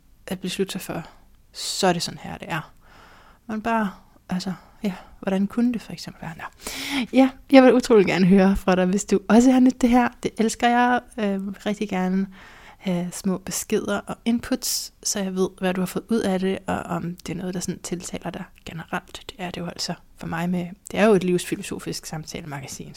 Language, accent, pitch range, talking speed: Danish, native, 170-205 Hz, 210 wpm